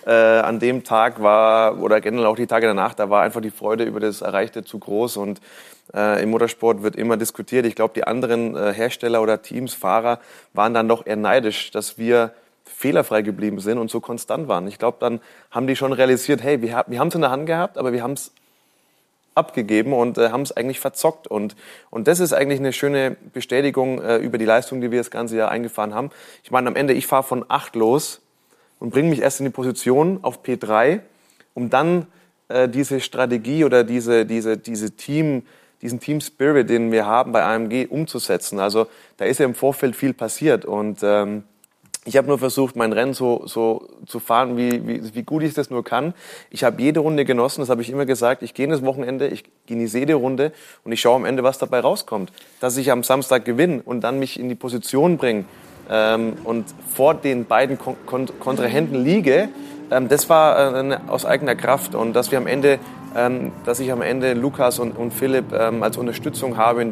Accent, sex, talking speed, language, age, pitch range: German, male, 205 wpm, German, 30-49, 115-135 Hz